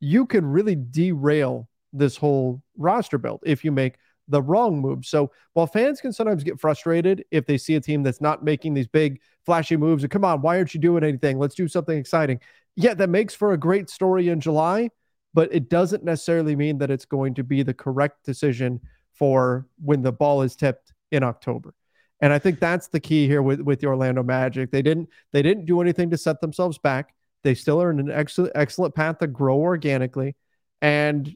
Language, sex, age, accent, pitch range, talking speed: English, male, 30-49, American, 140-175 Hz, 210 wpm